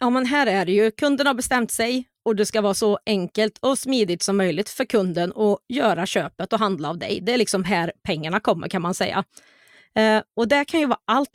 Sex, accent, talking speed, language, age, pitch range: female, native, 240 wpm, Swedish, 30-49, 195-245 Hz